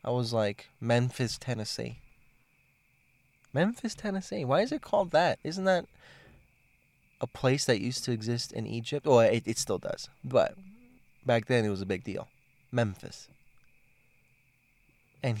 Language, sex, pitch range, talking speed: English, male, 105-135 Hz, 145 wpm